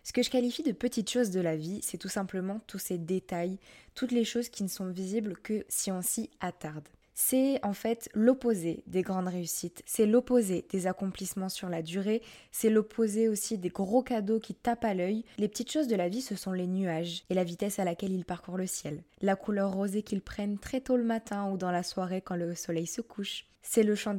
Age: 20-39